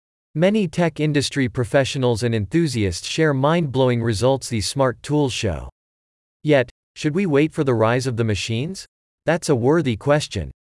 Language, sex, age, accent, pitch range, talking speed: English, male, 40-59, American, 110-155 Hz, 155 wpm